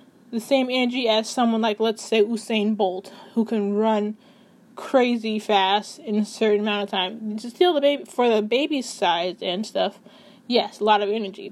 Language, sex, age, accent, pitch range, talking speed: English, female, 10-29, American, 215-255 Hz, 190 wpm